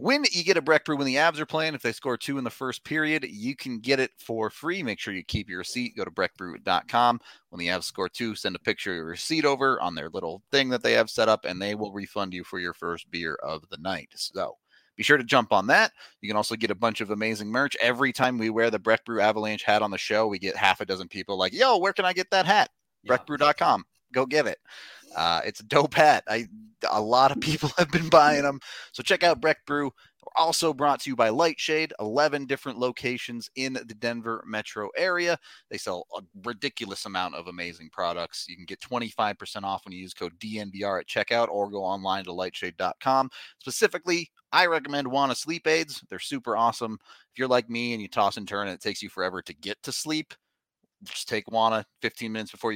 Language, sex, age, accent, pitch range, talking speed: English, male, 30-49, American, 105-150 Hz, 230 wpm